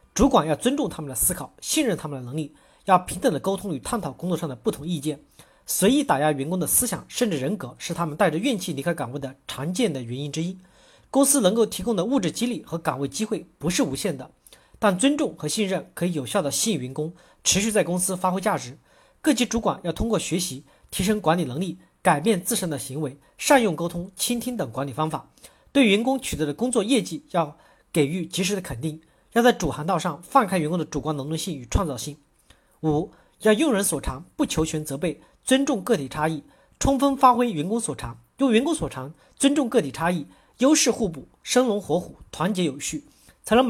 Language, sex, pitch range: Chinese, male, 155-225 Hz